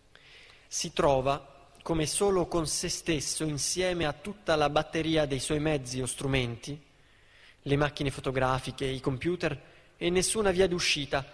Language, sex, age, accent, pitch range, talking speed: Italian, male, 20-39, native, 130-160 Hz, 140 wpm